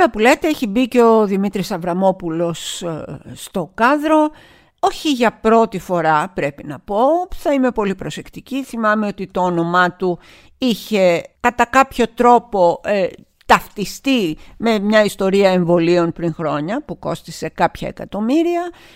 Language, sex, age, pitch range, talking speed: Greek, female, 50-69, 170-235 Hz, 130 wpm